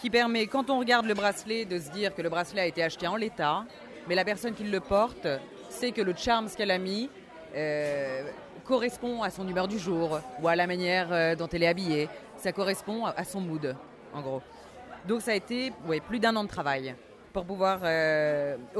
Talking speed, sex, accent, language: 210 wpm, female, French, French